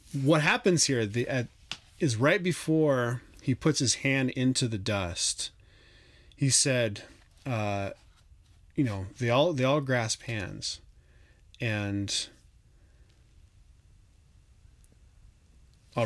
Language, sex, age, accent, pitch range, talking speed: English, male, 30-49, American, 100-130 Hz, 105 wpm